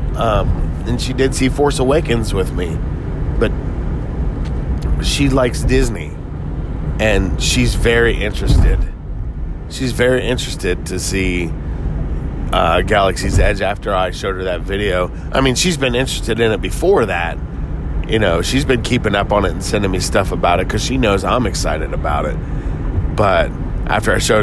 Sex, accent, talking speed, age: male, American, 160 wpm, 30-49